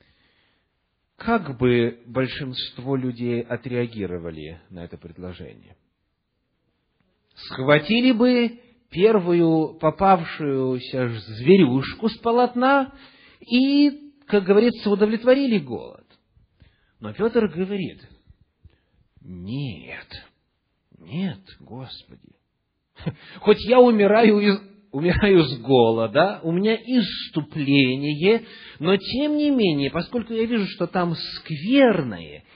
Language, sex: English, male